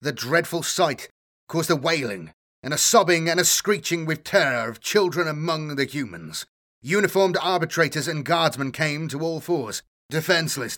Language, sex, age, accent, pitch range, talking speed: English, male, 30-49, British, 120-165 Hz, 155 wpm